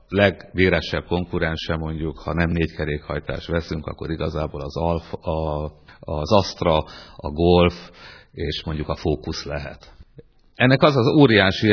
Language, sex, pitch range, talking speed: Hungarian, male, 85-105 Hz, 135 wpm